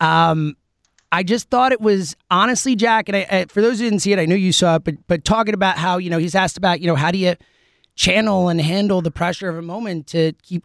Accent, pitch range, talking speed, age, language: American, 165-220 Hz, 265 wpm, 30-49, English